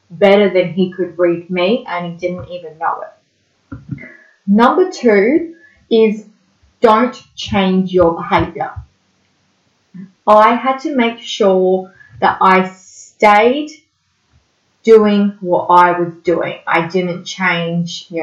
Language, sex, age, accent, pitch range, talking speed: English, female, 20-39, Australian, 180-235 Hz, 120 wpm